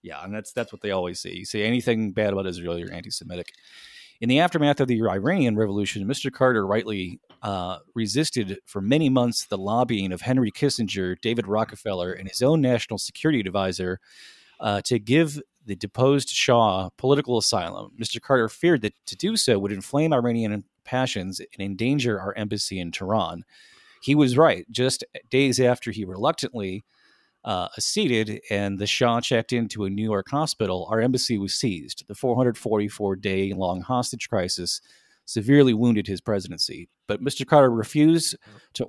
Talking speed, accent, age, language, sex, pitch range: 160 wpm, American, 30-49, English, male, 100-125 Hz